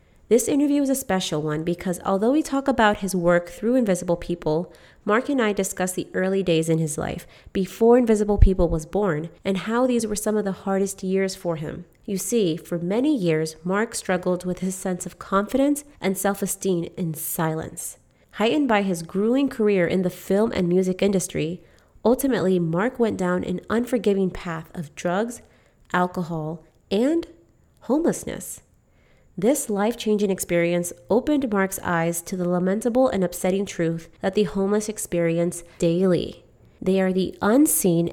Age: 30-49